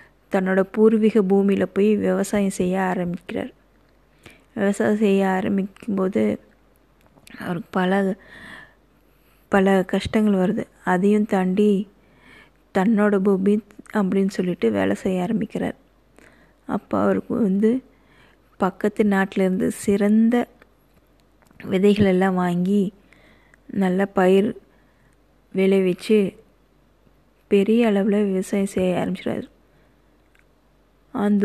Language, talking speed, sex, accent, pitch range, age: Tamil, 80 wpm, female, native, 190-220 Hz, 20-39